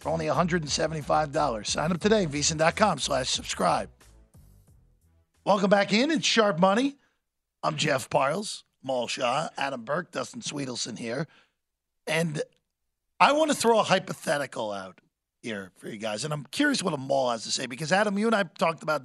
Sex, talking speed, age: male, 165 wpm, 40-59